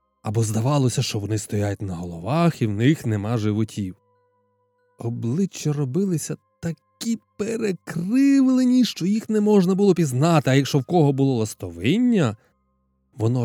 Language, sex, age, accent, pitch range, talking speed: Ukrainian, male, 20-39, native, 110-175 Hz, 130 wpm